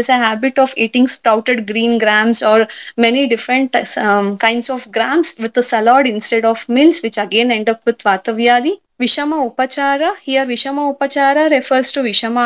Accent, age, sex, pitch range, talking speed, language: Indian, 20-39, female, 230-280 Hz, 165 wpm, English